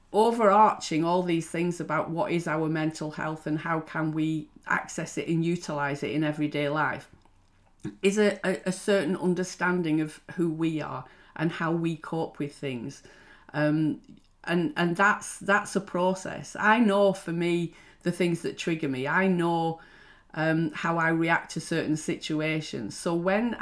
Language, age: English, 40-59